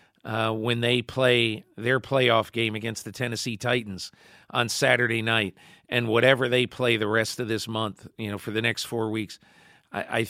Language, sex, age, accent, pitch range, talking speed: English, male, 50-69, American, 105-125 Hz, 185 wpm